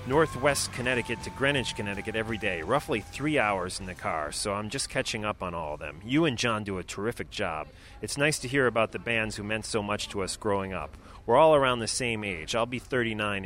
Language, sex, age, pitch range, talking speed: English, male, 30-49, 100-125 Hz, 235 wpm